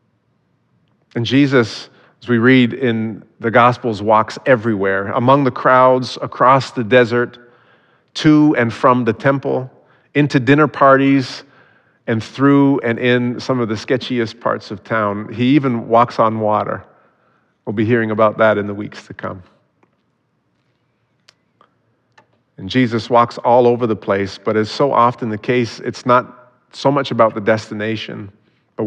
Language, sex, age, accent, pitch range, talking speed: English, male, 40-59, American, 110-125 Hz, 150 wpm